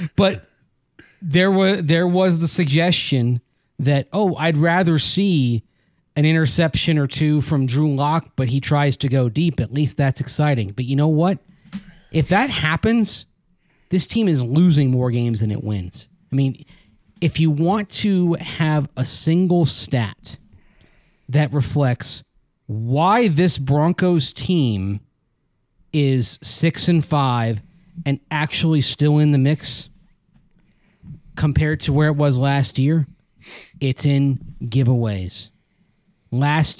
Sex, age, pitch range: male, 30-49, 130-160 Hz